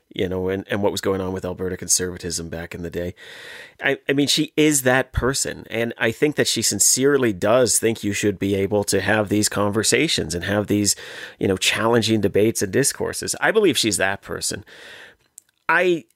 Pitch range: 100-135 Hz